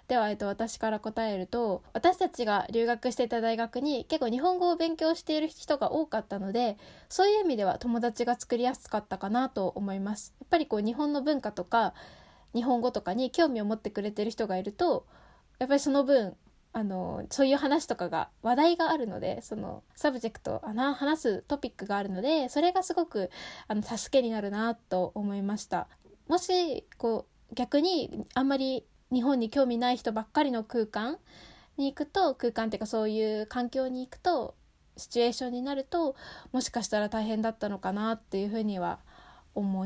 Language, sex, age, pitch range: Japanese, female, 10-29, 215-275 Hz